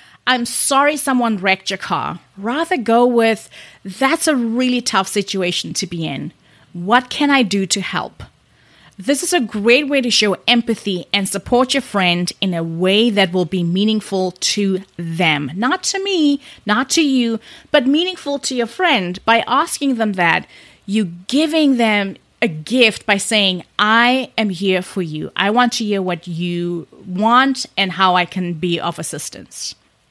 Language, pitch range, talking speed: English, 185-255 Hz, 170 wpm